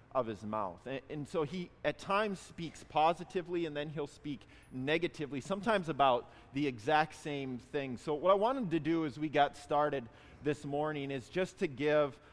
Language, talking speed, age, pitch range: English, 185 wpm, 30-49, 135-175 Hz